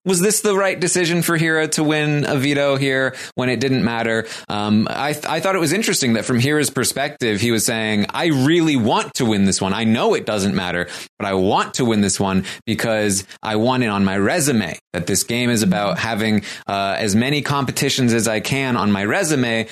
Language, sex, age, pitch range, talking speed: English, male, 20-39, 105-155 Hz, 220 wpm